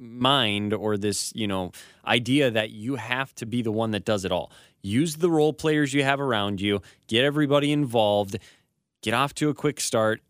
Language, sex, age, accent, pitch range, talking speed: English, male, 20-39, American, 105-130 Hz, 200 wpm